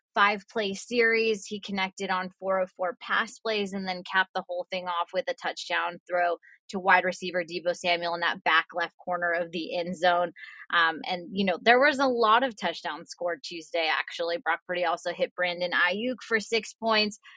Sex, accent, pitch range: female, American, 180-225 Hz